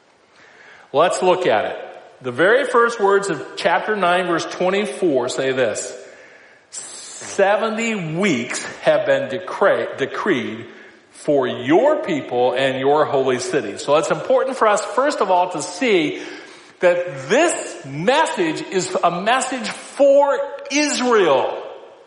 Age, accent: 50-69, American